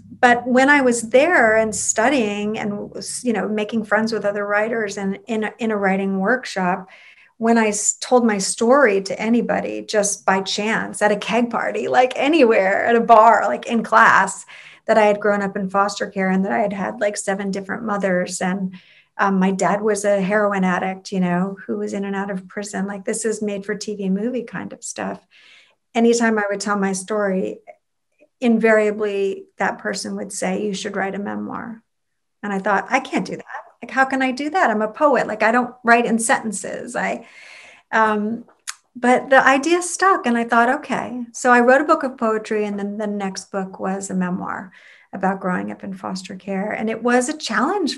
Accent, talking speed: American, 200 wpm